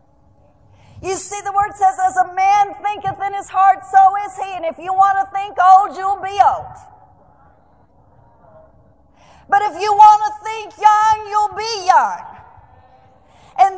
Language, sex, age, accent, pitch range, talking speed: English, female, 40-59, American, 325-400 Hz, 155 wpm